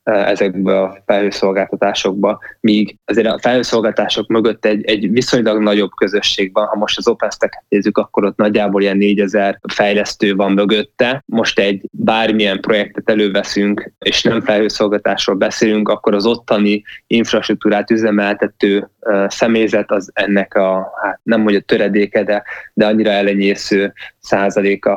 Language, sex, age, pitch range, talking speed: Hungarian, male, 20-39, 100-110 Hz, 135 wpm